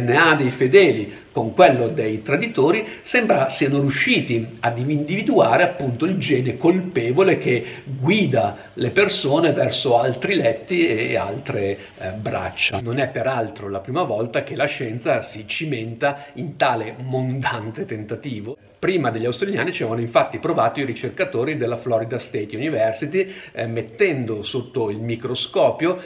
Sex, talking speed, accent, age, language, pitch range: male, 135 wpm, native, 50-69, Italian, 115-155 Hz